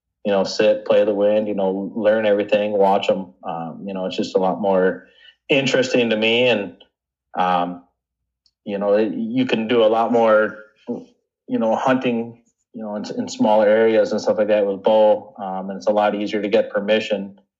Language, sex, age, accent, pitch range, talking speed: English, male, 30-49, American, 100-125 Hz, 200 wpm